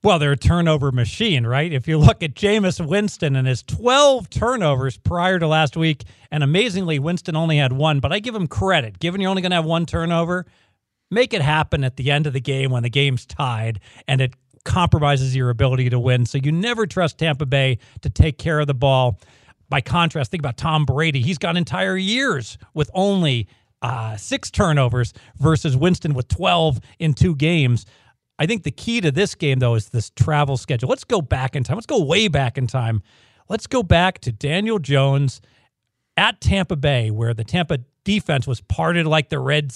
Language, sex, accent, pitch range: English, male, American, 125-170 Hz